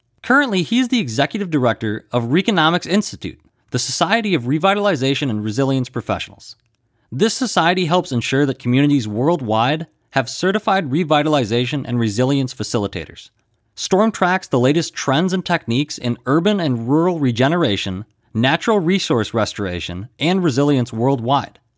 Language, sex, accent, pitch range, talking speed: English, male, American, 115-165 Hz, 130 wpm